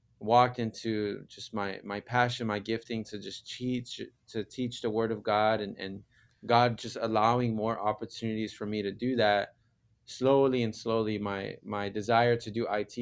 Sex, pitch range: male, 105-120 Hz